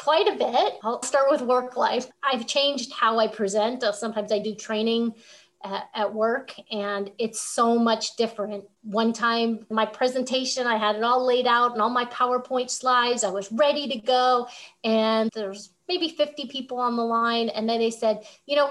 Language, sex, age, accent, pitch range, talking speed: English, female, 30-49, American, 220-275 Hz, 190 wpm